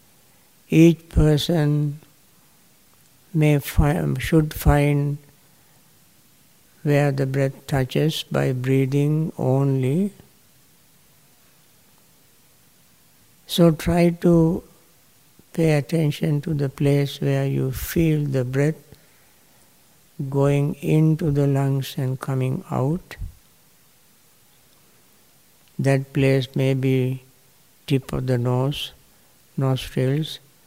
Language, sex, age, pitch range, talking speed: English, male, 60-79, 130-150 Hz, 80 wpm